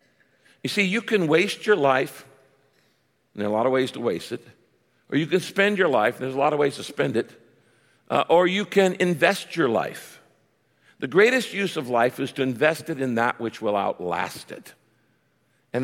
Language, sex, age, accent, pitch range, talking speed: English, male, 50-69, American, 125-185 Hz, 205 wpm